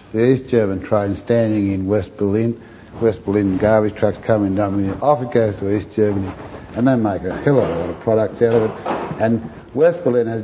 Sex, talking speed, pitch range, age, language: male, 230 wpm, 95-115 Hz, 60-79, English